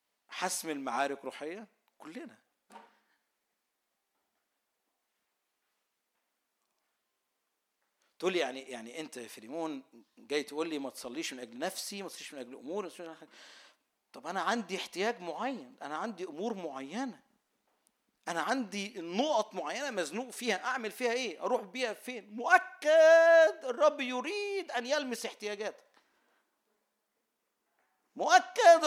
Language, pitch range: Arabic, 210-300 Hz